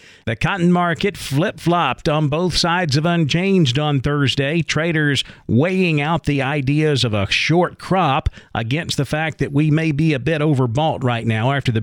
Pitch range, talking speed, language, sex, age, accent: 125-155 Hz, 175 wpm, English, male, 50-69, American